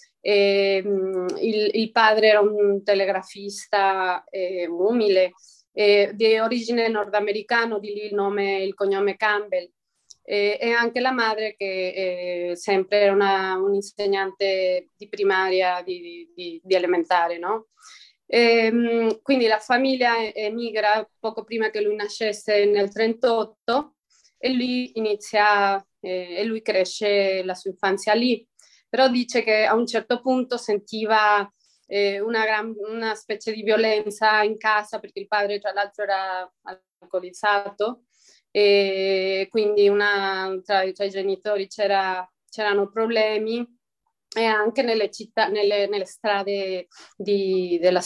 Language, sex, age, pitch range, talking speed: Italian, female, 20-39, 195-220 Hz, 125 wpm